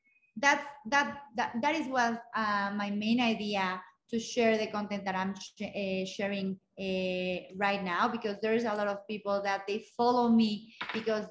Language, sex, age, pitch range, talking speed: English, female, 30-49, 195-235 Hz, 175 wpm